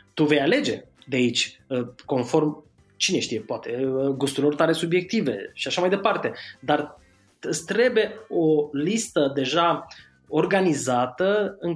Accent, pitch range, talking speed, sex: native, 125-165 Hz, 120 wpm, male